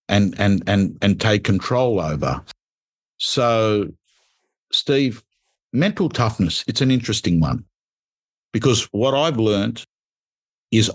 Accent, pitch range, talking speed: Australian, 105-150 Hz, 110 wpm